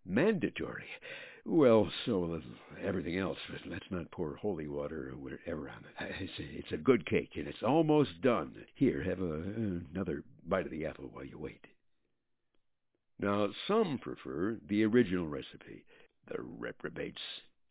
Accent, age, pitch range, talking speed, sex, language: American, 60-79, 85-115 Hz, 145 wpm, male, English